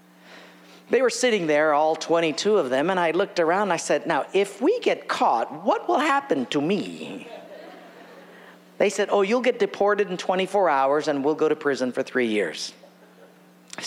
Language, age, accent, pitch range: English, 50-69, American, 120-190 Hz